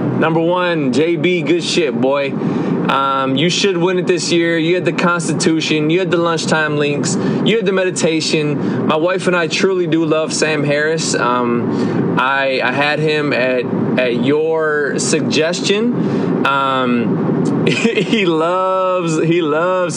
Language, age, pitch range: English, 20-39, 130-165 Hz